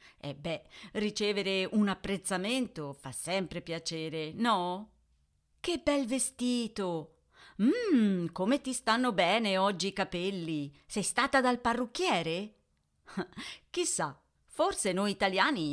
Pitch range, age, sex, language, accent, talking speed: 170-230 Hz, 40-59, female, Italian, native, 105 wpm